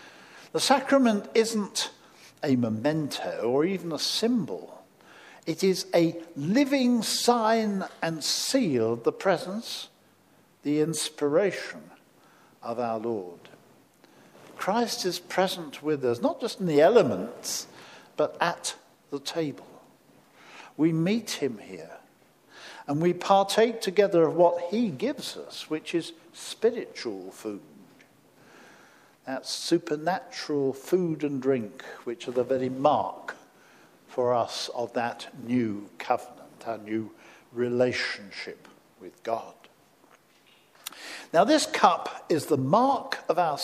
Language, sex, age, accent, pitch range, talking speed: English, male, 50-69, British, 135-215 Hz, 115 wpm